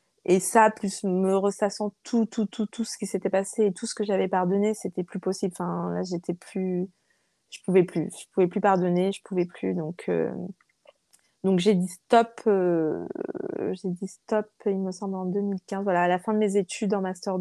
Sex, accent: female, French